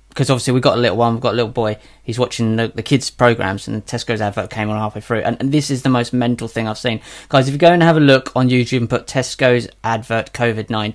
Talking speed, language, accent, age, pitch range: 275 wpm, English, British, 20-39, 120-155 Hz